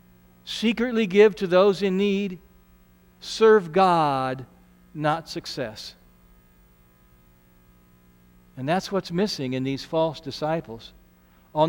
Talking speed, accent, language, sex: 100 wpm, American, English, male